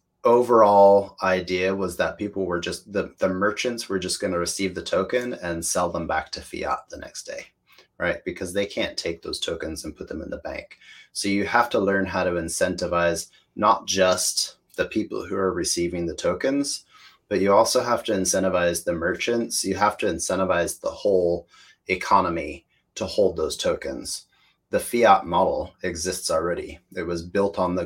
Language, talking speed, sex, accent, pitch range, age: English, 185 wpm, male, American, 90-100 Hz, 30-49